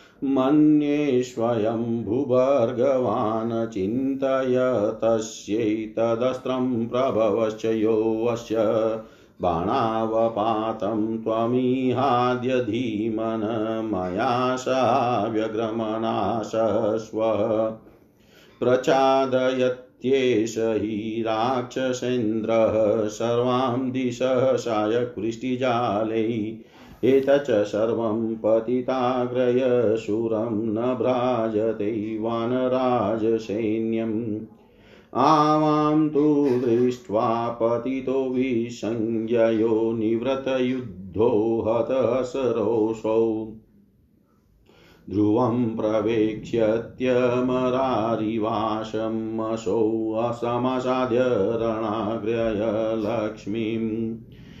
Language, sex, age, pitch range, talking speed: Hindi, male, 50-69, 110-125 Hz, 35 wpm